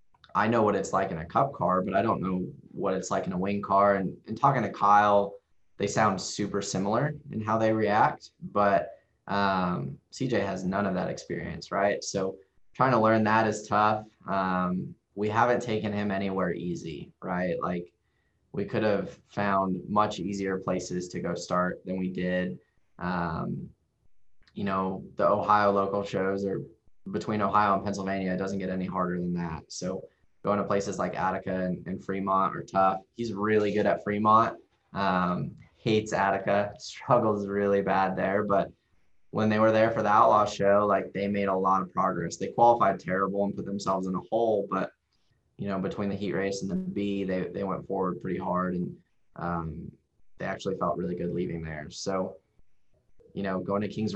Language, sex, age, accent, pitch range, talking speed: English, male, 20-39, American, 95-105 Hz, 185 wpm